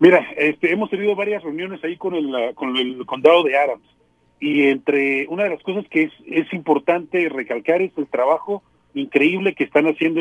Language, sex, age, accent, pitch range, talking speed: English, male, 40-59, Mexican, 155-205 Hz, 195 wpm